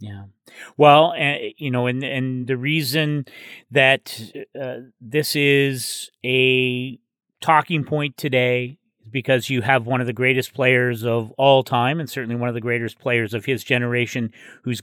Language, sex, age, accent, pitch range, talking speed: English, male, 40-59, American, 125-150 Hz, 160 wpm